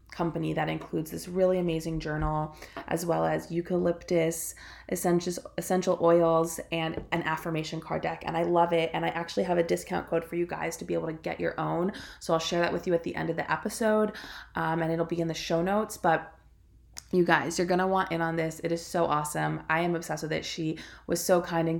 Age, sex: 20-39, female